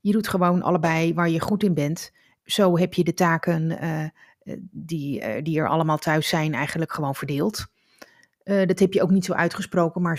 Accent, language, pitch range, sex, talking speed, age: Dutch, Dutch, 160-200 Hz, female, 200 wpm, 30-49